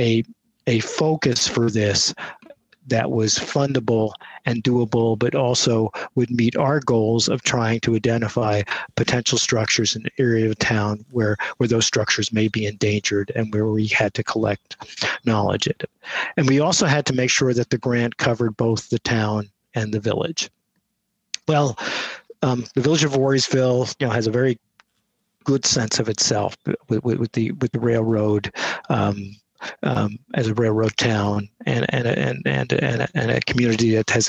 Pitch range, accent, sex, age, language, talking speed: 110-140 Hz, American, male, 50-69, English, 170 wpm